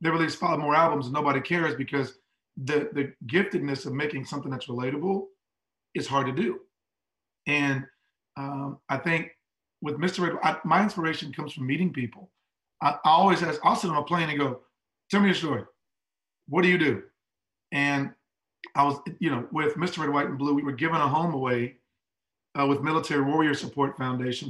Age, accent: 40-59, American